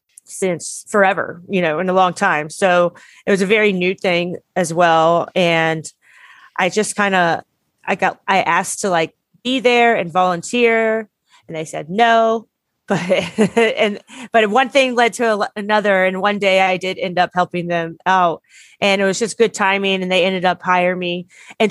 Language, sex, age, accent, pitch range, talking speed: English, female, 30-49, American, 175-205 Hz, 185 wpm